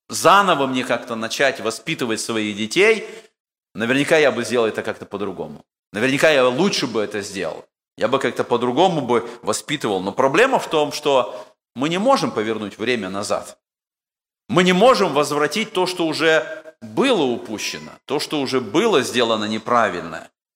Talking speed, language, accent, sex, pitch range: 150 wpm, Russian, native, male, 110-160 Hz